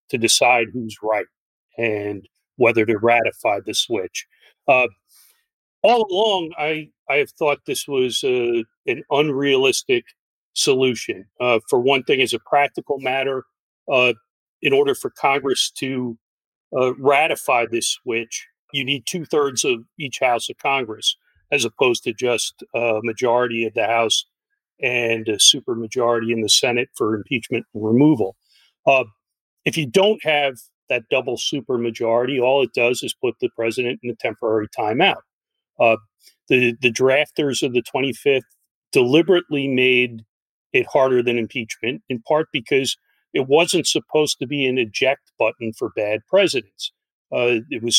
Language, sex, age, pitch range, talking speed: English, male, 40-59, 115-190 Hz, 145 wpm